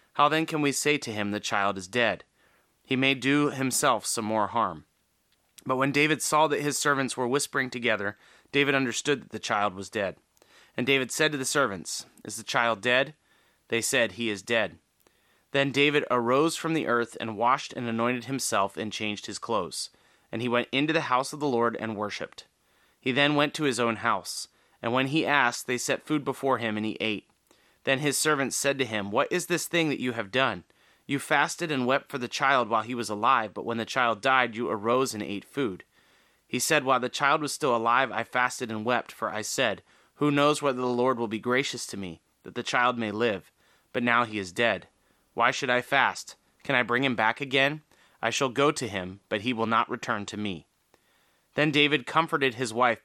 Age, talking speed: 30-49, 215 wpm